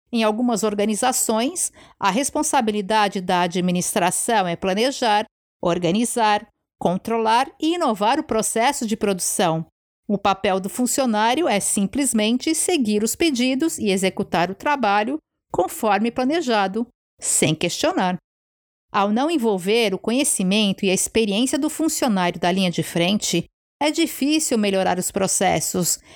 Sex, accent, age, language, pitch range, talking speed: female, Brazilian, 50-69, Portuguese, 195-255 Hz, 120 wpm